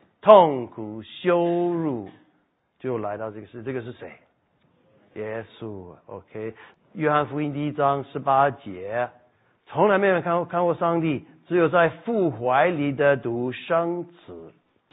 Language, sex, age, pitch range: Chinese, male, 60-79, 125-165 Hz